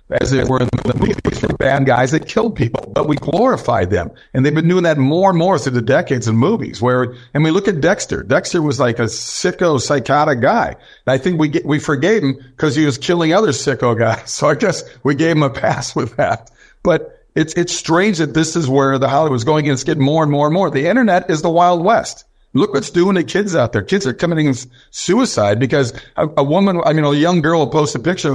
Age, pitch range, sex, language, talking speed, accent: 50-69, 130-165 Hz, male, English, 250 wpm, American